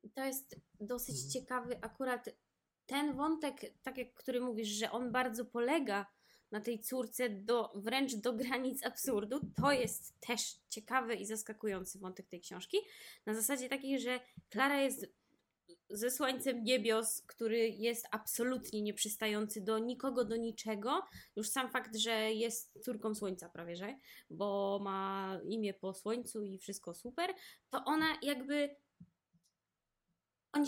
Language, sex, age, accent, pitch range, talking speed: Polish, female, 20-39, native, 210-255 Hz, 135 wpm